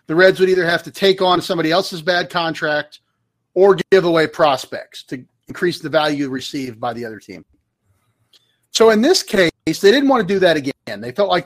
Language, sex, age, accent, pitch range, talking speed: English, male, 40-59, American, 140-200 Hz, 205 wpm